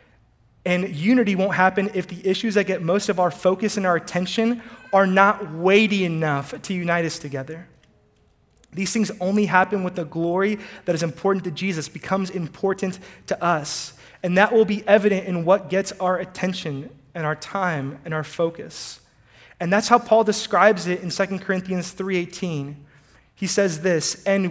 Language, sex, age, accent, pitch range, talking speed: English, male, 30-49, American, 165-205 Hz, 170 wpm